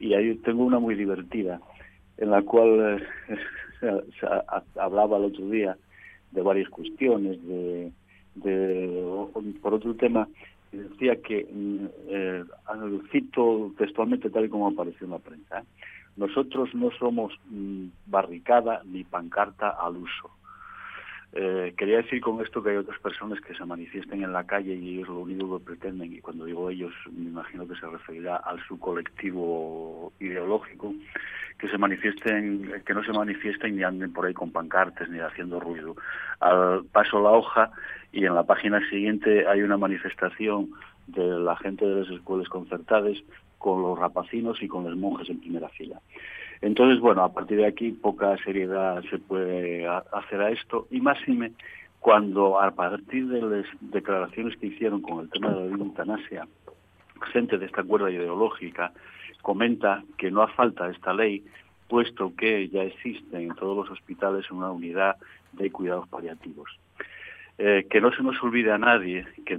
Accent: Spanish